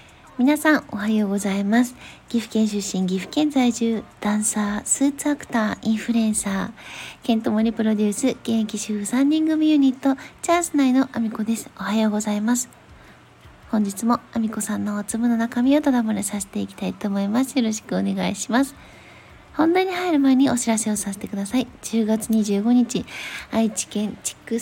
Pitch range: 205-255 Hz